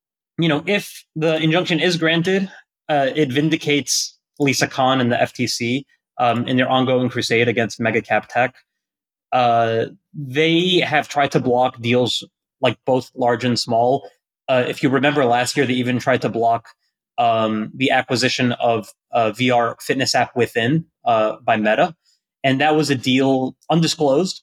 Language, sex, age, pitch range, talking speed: English, male, 20-39, 115-145 Hz, 160 wpm